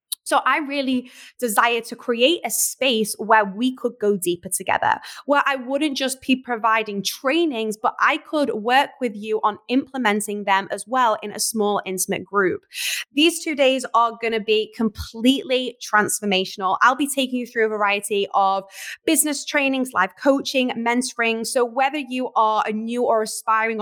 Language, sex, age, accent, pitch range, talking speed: English, female, 10-29, British, 205-260 Hz, 170 wpm